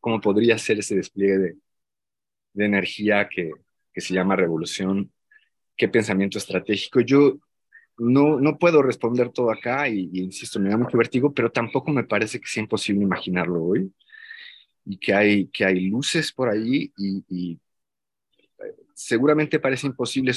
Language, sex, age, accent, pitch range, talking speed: Spanish, male, 30-49, Mexican, 95-120 Hz, 155 wpm